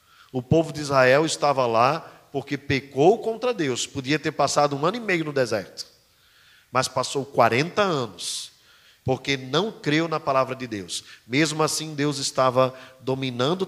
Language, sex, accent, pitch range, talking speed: Portuguese, male, Brazilian, 135-195 Hz, 155 wpm